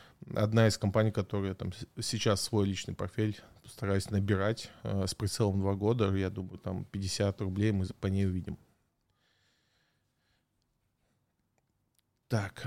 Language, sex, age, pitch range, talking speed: Russian, male, 20-39, 105-120 Hz, 120 wpm